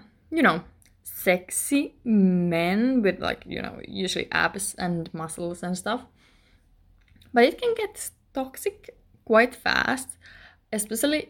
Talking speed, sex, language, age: 115 wpm, female, English, 20-39